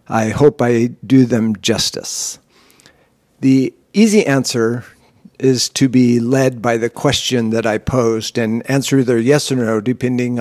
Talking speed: 150 wpm